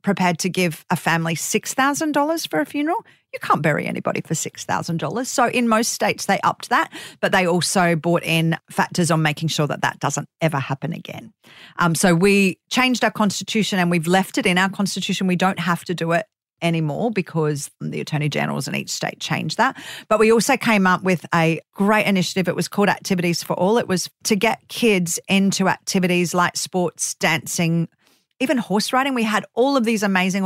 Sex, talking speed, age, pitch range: female, 195 wpm, 40-59, 165-195 Hz